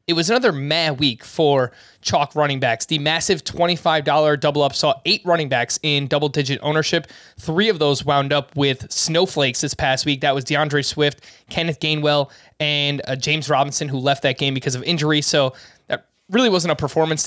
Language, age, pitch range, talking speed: English, 20-39, 135-160 Hz, 185 wpm